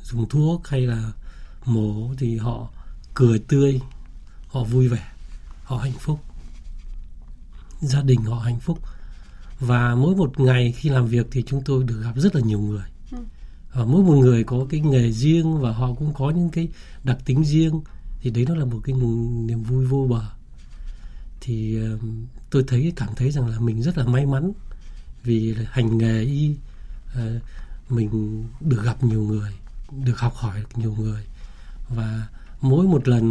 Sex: male